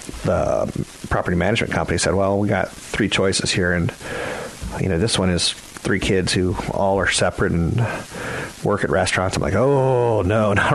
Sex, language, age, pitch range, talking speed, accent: male, English, 40-59, 85-115 Hz, 180 wpm, American